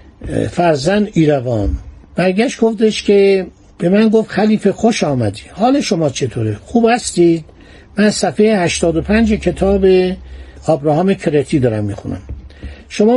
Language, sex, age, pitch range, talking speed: Persian, male, 60-79, 145-205 Hz, 115 wpm